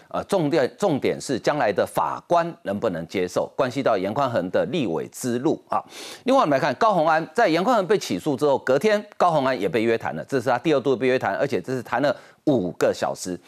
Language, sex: Chinese, male